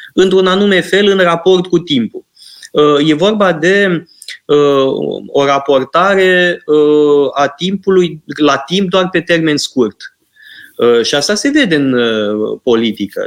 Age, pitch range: 20-39, 130-190 Hz